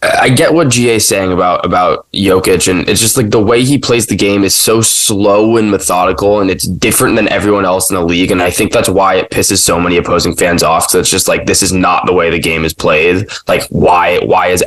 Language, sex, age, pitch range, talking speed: English, male, 10-29, 90-105 Hz, 255 wpm